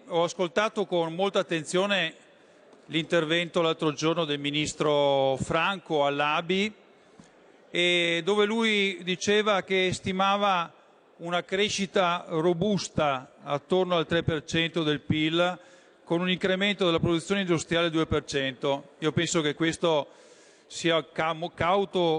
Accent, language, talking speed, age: native, Italian, 105 wpm, 40-59